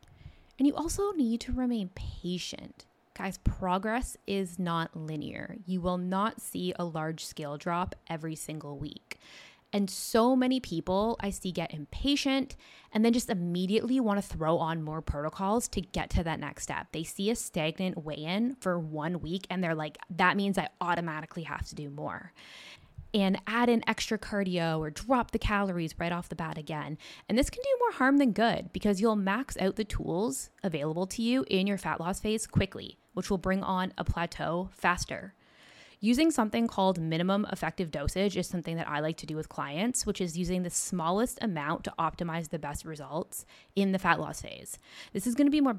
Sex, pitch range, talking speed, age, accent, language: female, 165-225 Hz, 195 wpm, 20-39, American, English